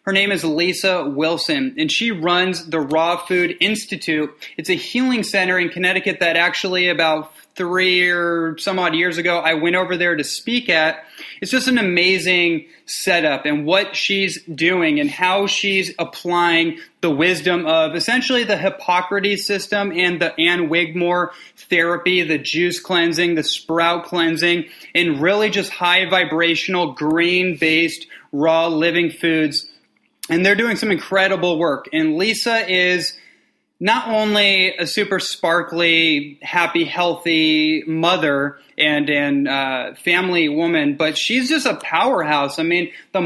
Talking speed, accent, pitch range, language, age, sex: 145 wpm, American, 165-190 Hz, English, 30-49, male